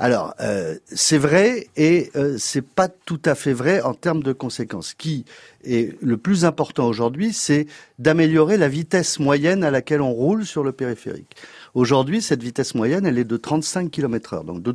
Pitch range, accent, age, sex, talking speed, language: 125-170 Hz, French, 40-59, male, 190 wpm, French